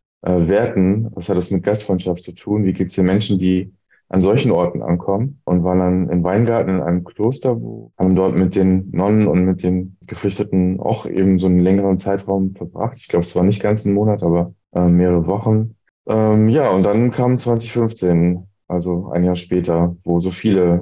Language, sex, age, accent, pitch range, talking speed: German, male, 20-39, German, 85-100 Hz, 200 wpm